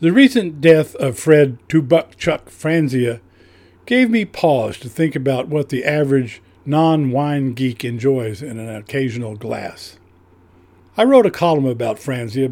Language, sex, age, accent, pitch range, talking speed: English, male, 50-69, American, 110-155 Hz, 140 wpm